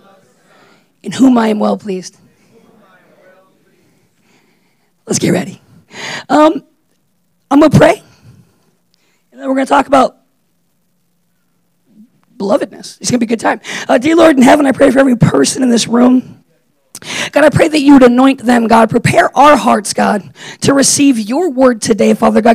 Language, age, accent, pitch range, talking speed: English, 40-59, American, 195-260 Hz, 160 wpm